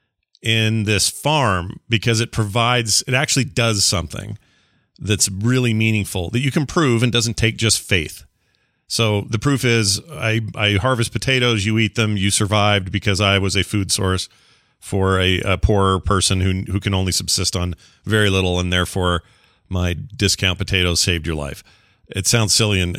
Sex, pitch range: male, 90-115 Hz